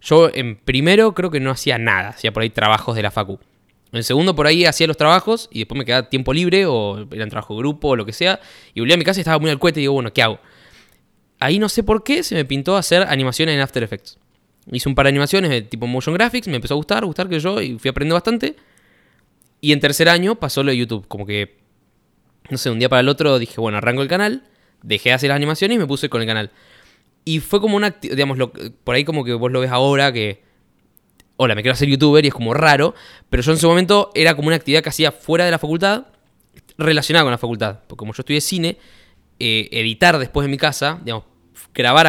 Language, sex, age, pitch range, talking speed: Spanish, male, 10-29, 115-155 Hz, 250 wpm